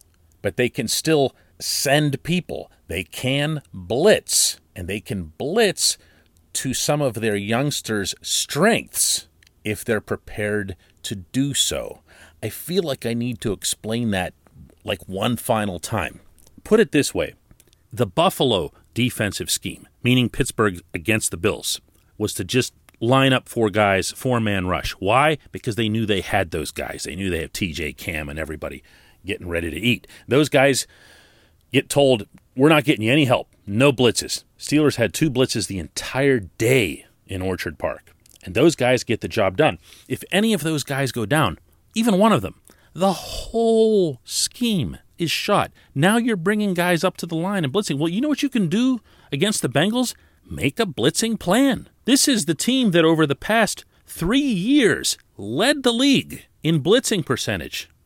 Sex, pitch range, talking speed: male, 105-170 Hz, 170 wpm